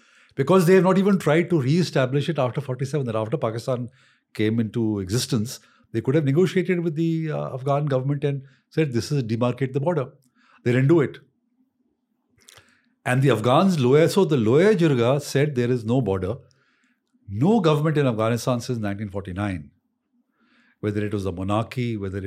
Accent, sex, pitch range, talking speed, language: Indian, male, 110-160 Hz, 165 wpm, English